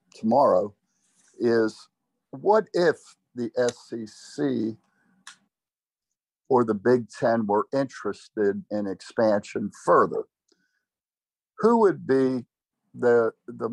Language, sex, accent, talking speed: English, male, American, 85 wpm